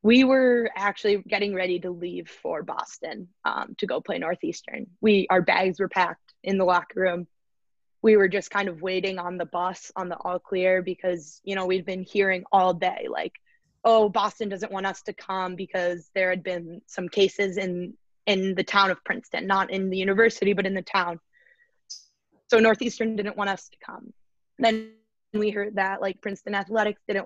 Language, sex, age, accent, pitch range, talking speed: English, female, 20-39, American, 185-215 Hz, 195 wpm